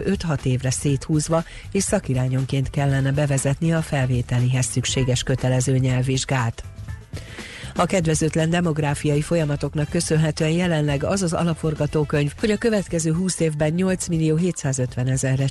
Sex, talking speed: female, 115 wpm